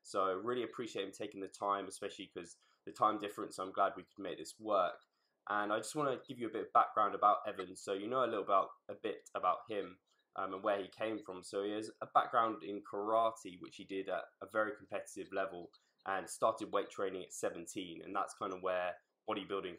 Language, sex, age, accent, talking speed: English, male, 10-29, British, 230 wpm